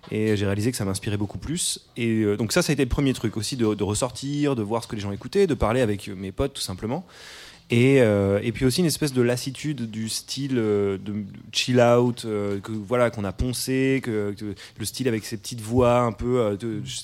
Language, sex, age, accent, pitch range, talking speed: French, male, 20-39, French, 105-130 Hz, 235 wpm